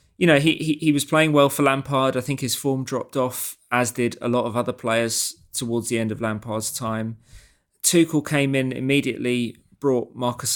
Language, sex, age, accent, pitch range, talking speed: English, male, 20-39, British, 110-125 Hz, 200 wpm